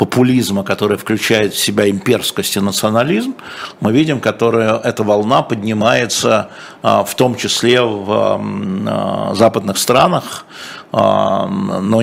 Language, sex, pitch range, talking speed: Russian, male, 105-120 Hz, 105 wpm